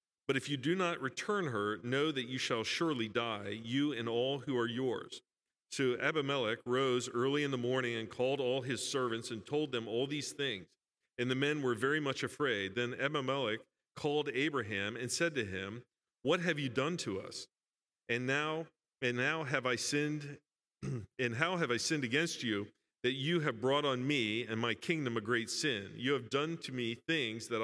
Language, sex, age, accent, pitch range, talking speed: English, male, 50-69, American, 115-145 Hz, 200 wpm